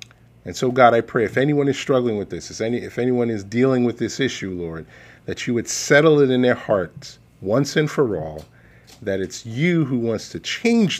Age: 40-59